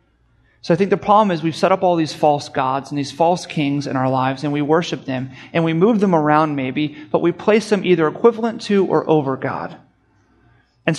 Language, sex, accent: English, male, American